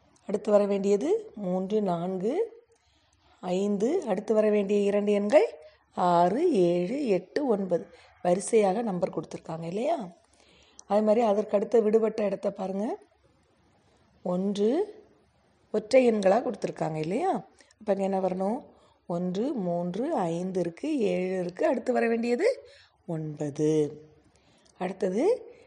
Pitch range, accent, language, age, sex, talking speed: 180-240 Hz, native, Tamil, 30-49, female, 105 wpm